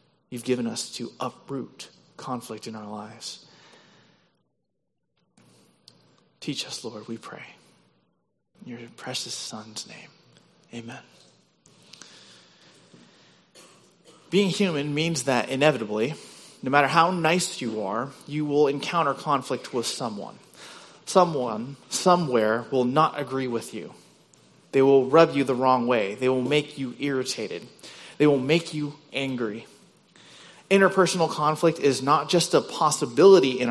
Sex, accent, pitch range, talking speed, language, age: male, American, 130-180 Hz, 125 wpm, English, 30-49